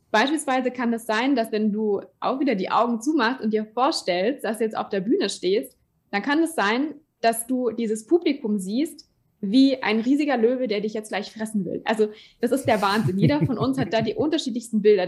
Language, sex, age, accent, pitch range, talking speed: German, female, 20-39, German, 210-265 Hz, 225 wpm